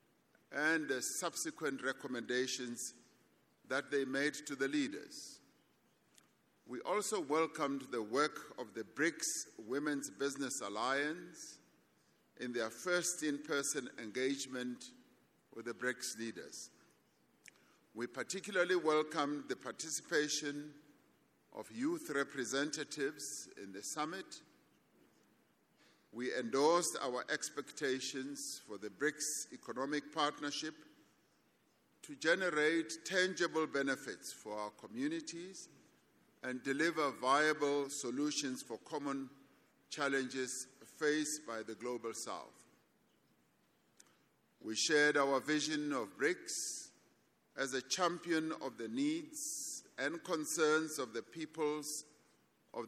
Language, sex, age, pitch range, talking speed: English, male, 50-69, 130-160 Hz, 100 wpm